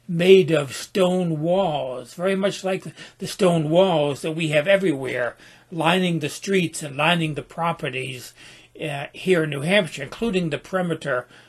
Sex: male